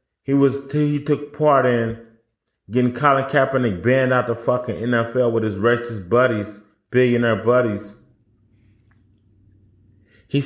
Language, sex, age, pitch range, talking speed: English, male, 30-49, 105-130 Hz, 120 wpm